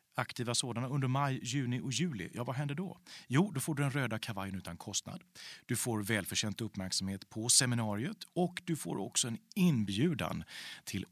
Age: 40-59